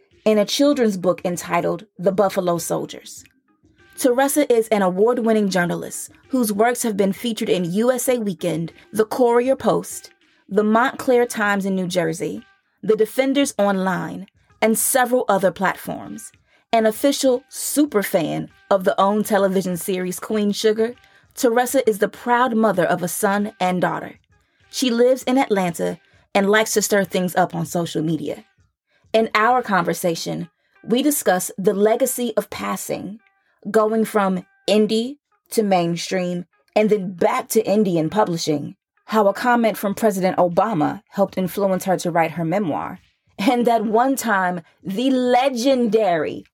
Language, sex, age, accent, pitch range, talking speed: English, female, 20-39, American, 185-240 Hz, 140 wpm